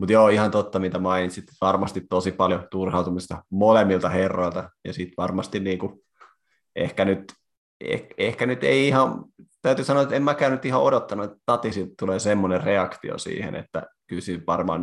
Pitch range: 90-105 Hz